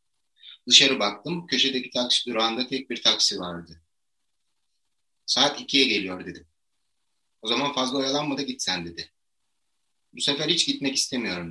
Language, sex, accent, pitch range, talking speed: Turkish, male, native, 95-135 Hz, 130 wpm